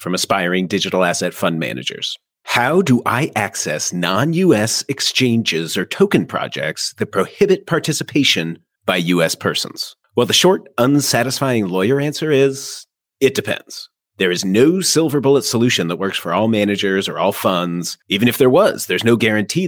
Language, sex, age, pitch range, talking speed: English, male, 30-49, 95-140 Hz, 155 wpm